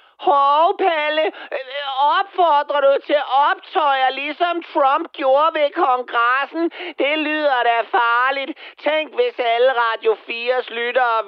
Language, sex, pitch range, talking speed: Danish, male, 220-310 Hz, 110 wpm